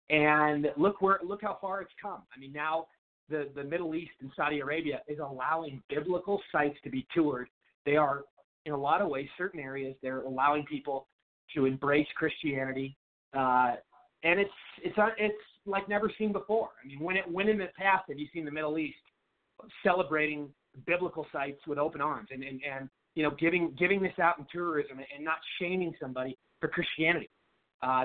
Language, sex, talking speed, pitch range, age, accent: English, male, 185 wpm, 145-180 Hz, 30-49, American